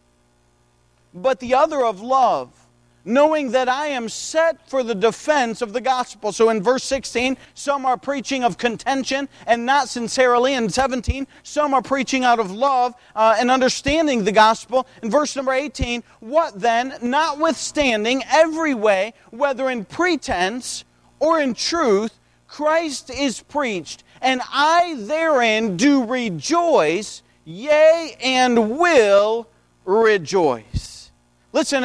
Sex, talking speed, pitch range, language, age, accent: male, 130 wpm, 200-280 Hz, English, 40-59, American